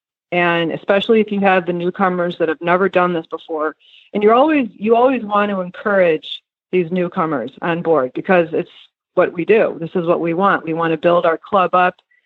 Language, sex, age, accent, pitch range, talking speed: English, female, 40-59, American, 170-200 Hz, 205 wpm